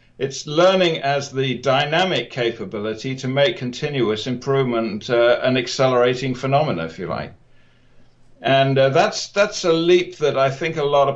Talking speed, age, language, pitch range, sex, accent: 155 wpm, 60-79, English, 120-145 Hz, male, British